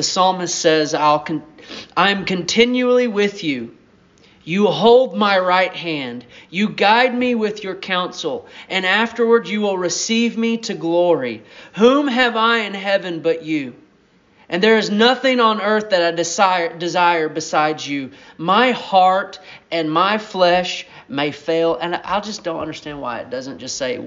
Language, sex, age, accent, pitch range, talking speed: English, male, 40-59, American, 155-205 Hz, 160 wpm